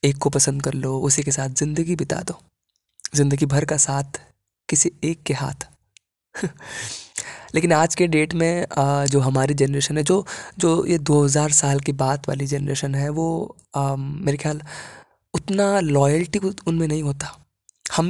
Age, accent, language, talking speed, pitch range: 20-39, native, Hindi, 165 wpm, 130-160 Hz